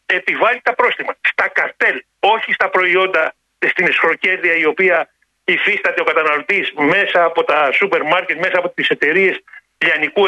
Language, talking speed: Greek, 145 wpm